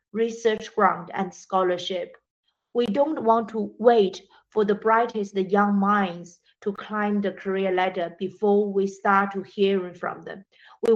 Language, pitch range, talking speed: English, 190-225 Hz, 150 wpm